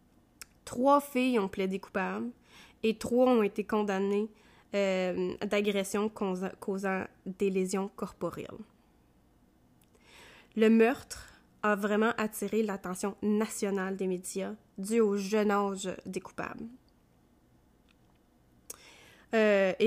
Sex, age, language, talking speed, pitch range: female, 20-39, French, 95 wpm, 190-220 Hz